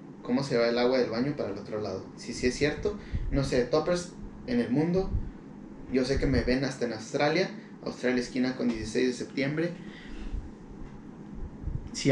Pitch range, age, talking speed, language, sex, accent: 115-145 Hz, 30-49, 185 wpm, Spanish, male, Mexican